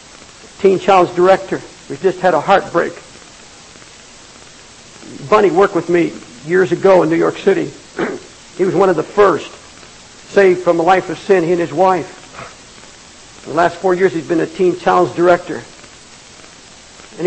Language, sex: English, male